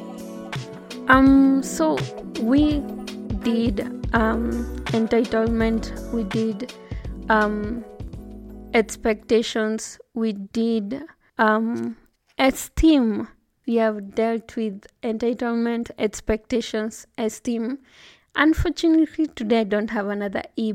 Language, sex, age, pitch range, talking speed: English, female, 20-39, 215-245 Hz, 80 wpm